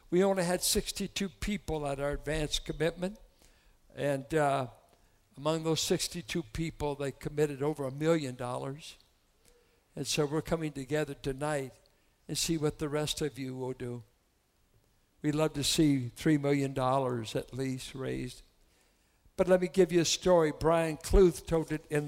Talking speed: 155 wpm